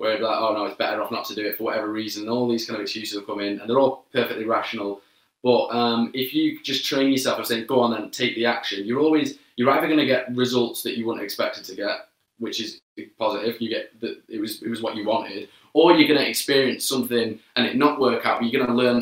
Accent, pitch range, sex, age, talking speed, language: British, 105-120 Hz, male, 20-39, 275 wpm, English